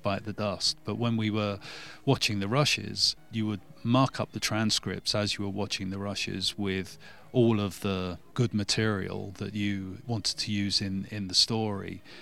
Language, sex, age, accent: English, male, 30-49, British